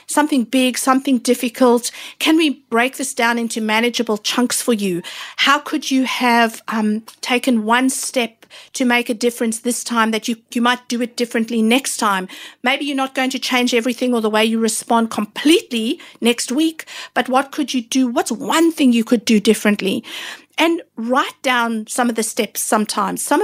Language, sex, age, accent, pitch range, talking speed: English, female, 50-69, South African, 220-270 Hz, 185 wpm